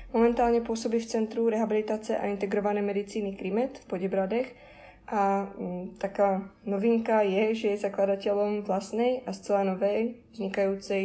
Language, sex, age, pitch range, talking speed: Czech, female, 20-39, 200-225 Hz, 125 wpm